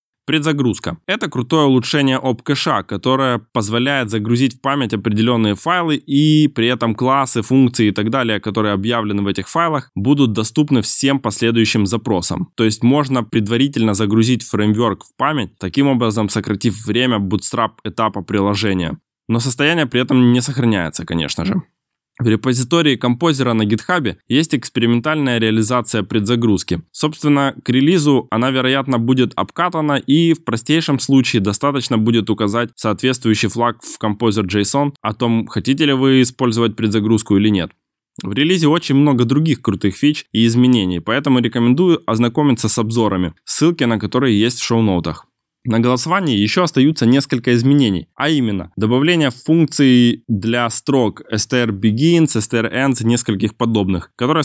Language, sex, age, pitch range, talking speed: Russian, male, 20-39, 110-140 Hz, 140 wpm